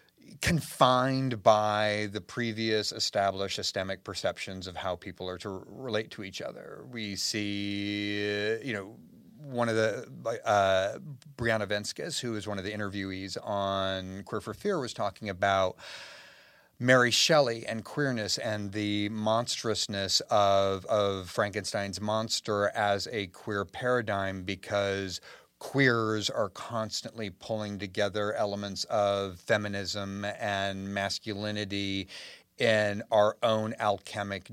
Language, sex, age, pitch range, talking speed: English, male, 30-49, 100-125 Hz, 120 wpm